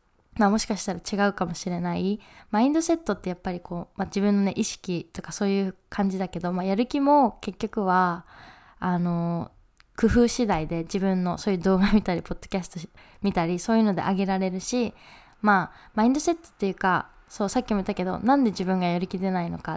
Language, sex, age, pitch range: Japanese, female, 20-39, 185-225 Hz